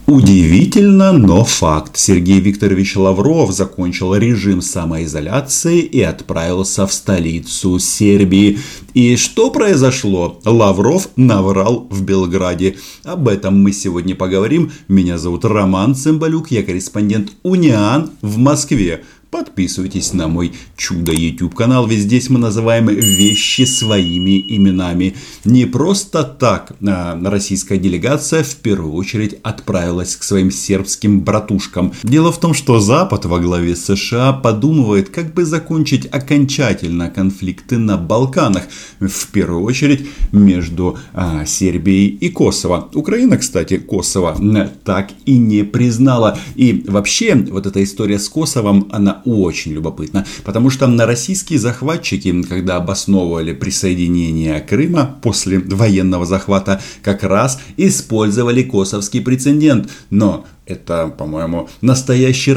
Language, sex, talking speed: Russian, male, 120 wpm